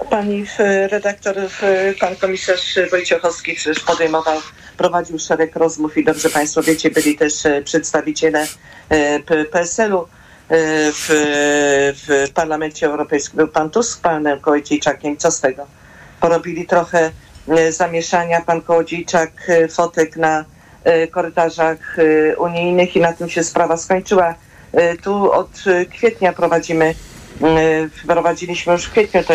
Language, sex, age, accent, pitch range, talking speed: Polish, female, 50-69, native, 155-175 Hz, 110 wpm